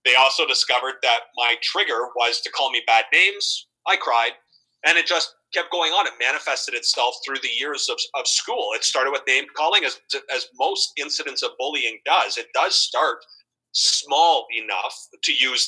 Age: 30-49